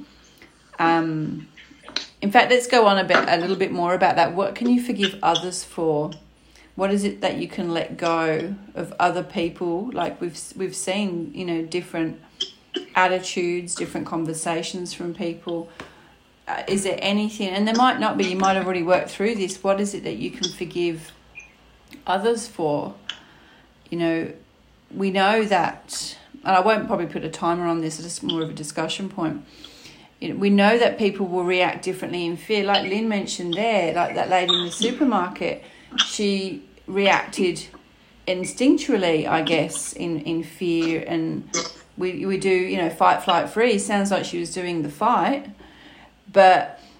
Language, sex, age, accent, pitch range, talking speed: English, female, 40-59, Australian, 170-205 Hz, 170 wpm